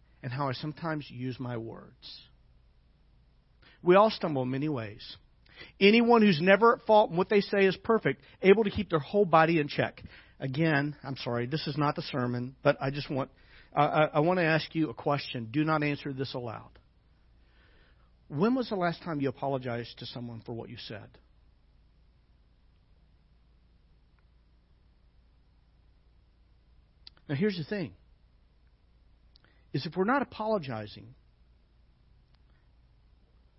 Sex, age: male, 50-69